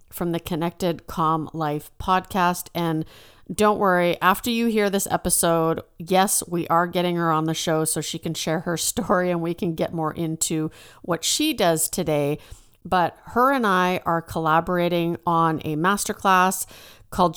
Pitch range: 160-195 Hz